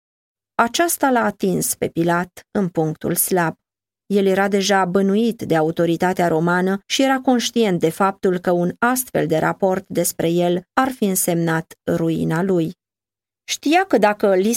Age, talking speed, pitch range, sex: 20-39, 150 wpm, 175-230 Hz, female